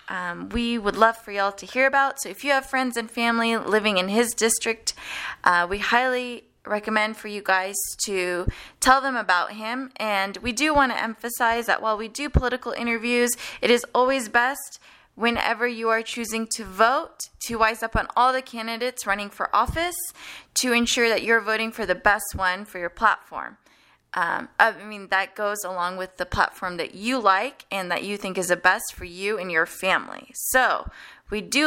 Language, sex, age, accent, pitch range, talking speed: English, female, 20-39, American, 200-240 Hz, 195 wpm